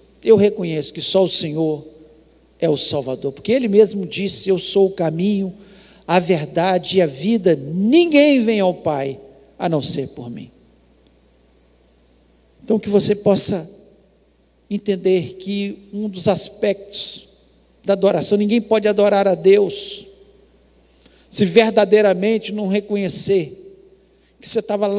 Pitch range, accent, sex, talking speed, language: 145-210 Hz, Brazilian, male, 130 wpm, Portuguese